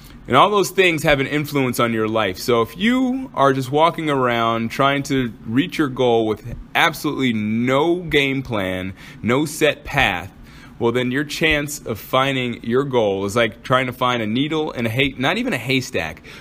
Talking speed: 185 wpm